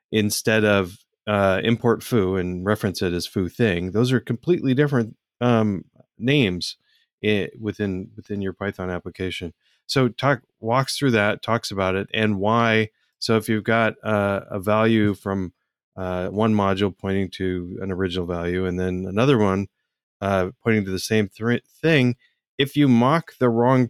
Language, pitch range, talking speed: English, 95-120 Hz, 160 wpm